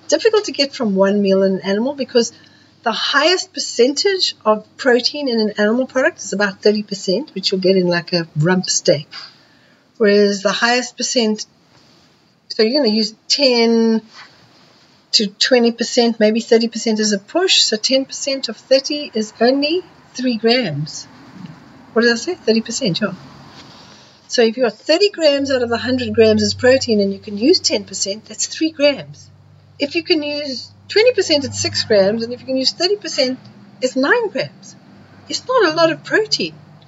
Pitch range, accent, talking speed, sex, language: 200-285 Hz, Australian, 170 wpm, female, English